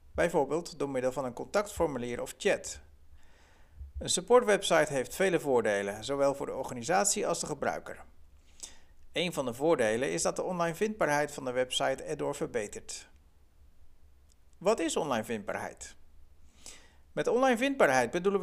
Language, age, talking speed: Dutch, 60-79, 135 wpm